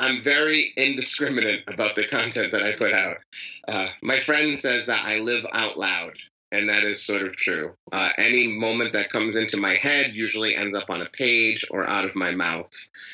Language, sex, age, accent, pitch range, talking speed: English, male, 30-49, American, 105-135 Hz, 200 wpm